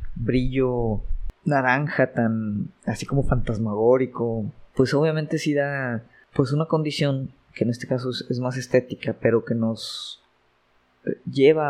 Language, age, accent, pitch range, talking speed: Spanish, 20-39, Mexican, 110-130 Hz, 130 wpm